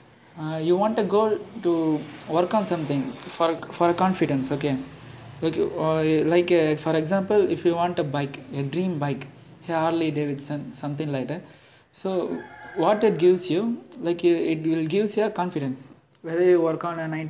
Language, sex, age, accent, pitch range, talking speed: Tamil, male, 20-39, native, 145-180 Hz, 180 wpm